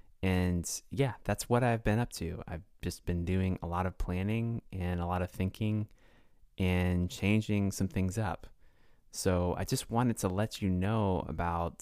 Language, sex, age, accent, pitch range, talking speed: English, male, 20-39, American, 90-105 Hz, 180 wpm